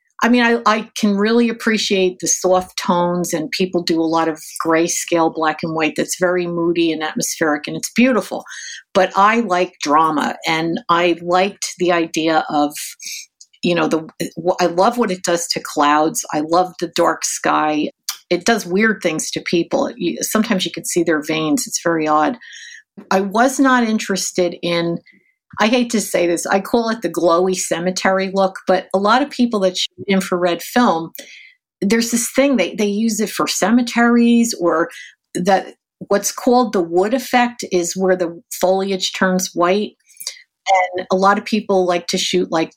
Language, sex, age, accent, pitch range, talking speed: English, female, 50-69, American, 170-220 Hz, 175 wpm